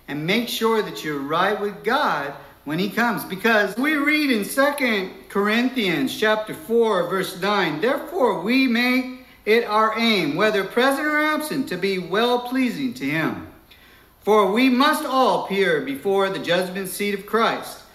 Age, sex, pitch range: 60-79, male, 190-240 Hz